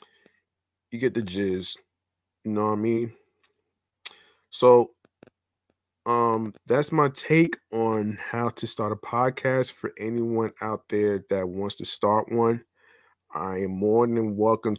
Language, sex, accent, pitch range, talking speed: English, male, American, 105-125 Hz, 140 wpm